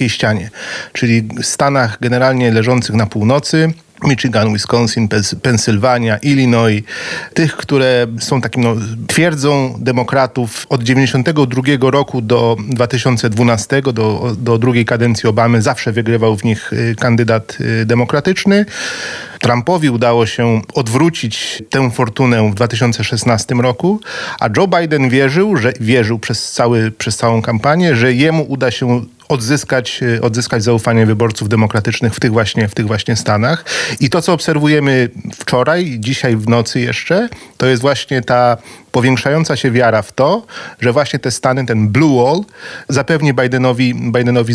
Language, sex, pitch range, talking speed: Polish, male, 115-135 Hz, 135 wpm